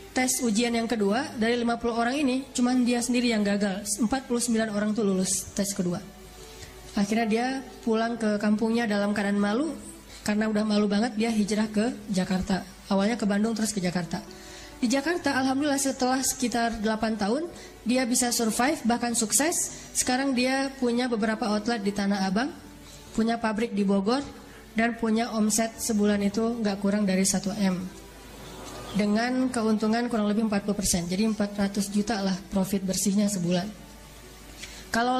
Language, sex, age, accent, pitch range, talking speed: Indonesian, female, 20-39, native, 205-255 Hz, 150 wpm